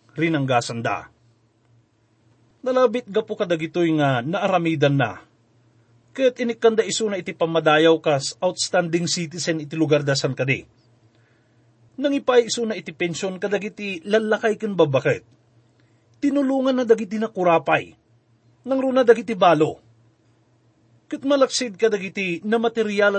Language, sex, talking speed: English, male, 120 wpm